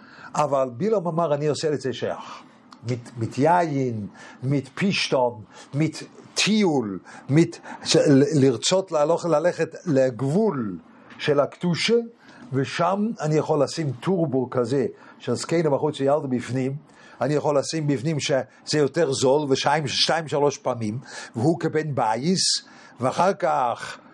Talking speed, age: 115 wpm, 50-69